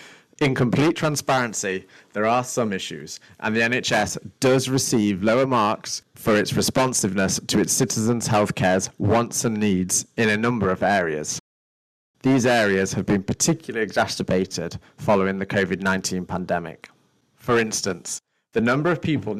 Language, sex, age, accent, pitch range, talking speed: English, male, 30-49, British, 100-125 Hz, 140 wpm